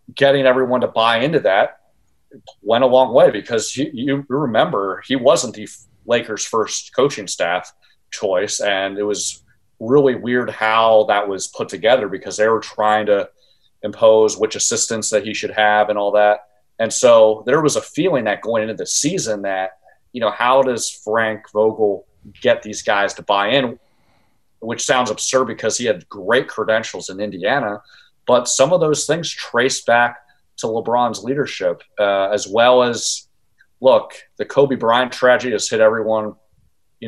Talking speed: 170 wpm